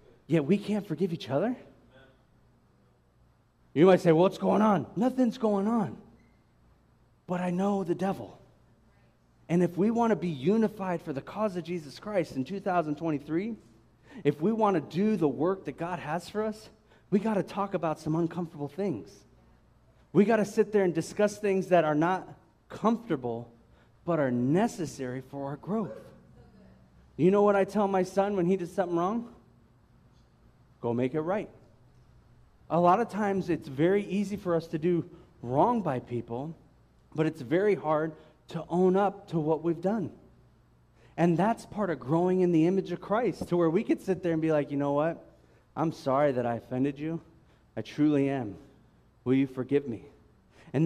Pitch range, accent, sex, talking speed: 140-195 Hz, American, male, 175 wpm